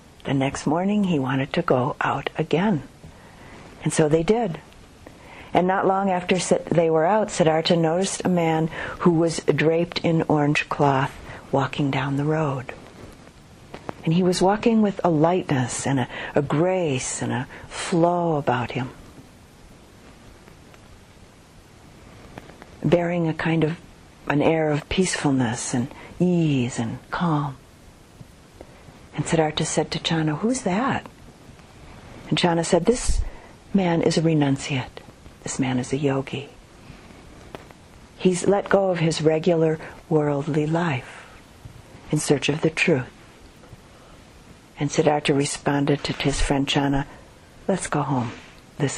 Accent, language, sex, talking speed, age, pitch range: American, English, female, 130 wpm, 50-69, 140-175 Hz